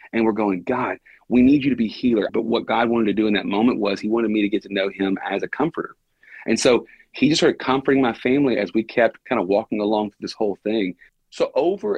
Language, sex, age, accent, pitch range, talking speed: English, male, 40-59, American, 100-130 Hz, 260 wpm